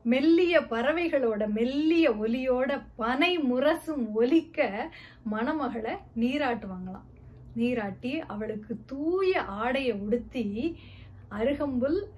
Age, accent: 20-39, native